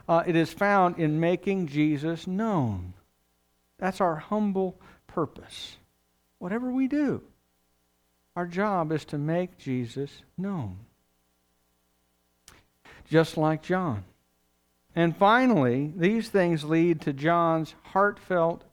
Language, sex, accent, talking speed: English, male, American, 105 wpm